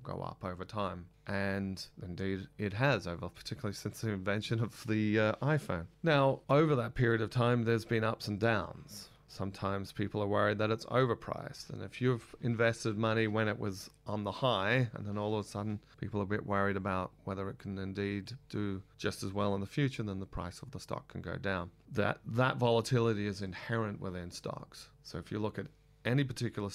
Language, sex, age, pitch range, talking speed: English, male, 30-49, 95-120 Hz, 205 wpm